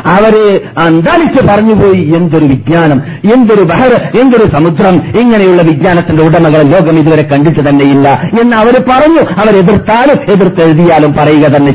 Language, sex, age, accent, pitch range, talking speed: Malayalam, male, 50-69, native, 145-225 Hz, 125 wpm